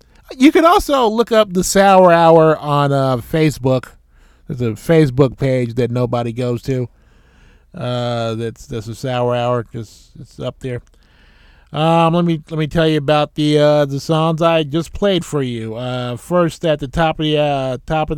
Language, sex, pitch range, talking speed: English, male, 120-155 Hz, 190 wpm